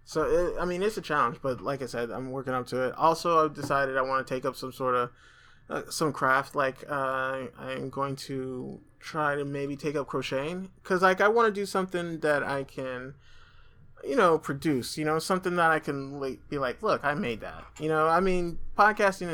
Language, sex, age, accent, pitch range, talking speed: English, male, 20-39, American, 120-155 Hz, 215 wpm